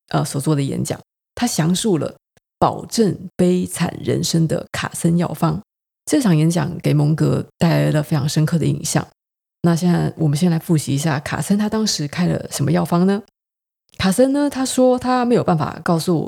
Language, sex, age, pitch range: Chinese, female, 20-39, 150-180 Hz